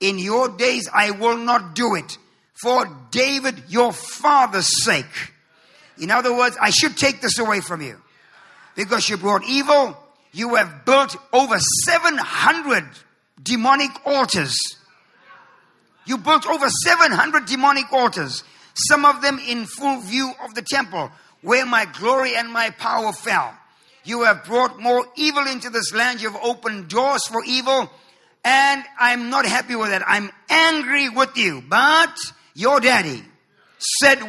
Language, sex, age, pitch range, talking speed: English, male, 50-69, 210-265 Hz, 145 wpm